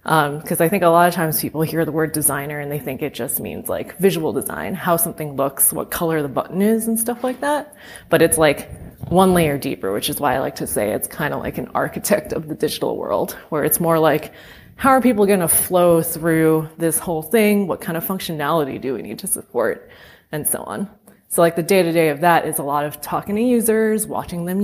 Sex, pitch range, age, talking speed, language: female, 160-220 Hz, 20-39, 245 wpm, English